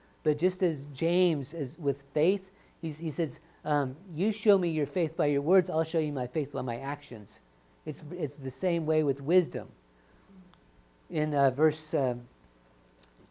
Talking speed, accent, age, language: 170 wpm, American, 50-69, English